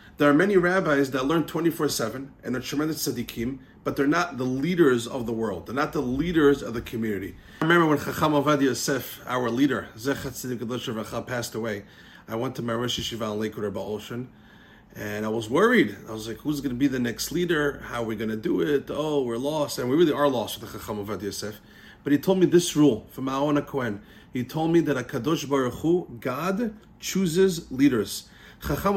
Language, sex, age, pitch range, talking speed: English, male, 30-49, 120-170 Hz, 210 wpm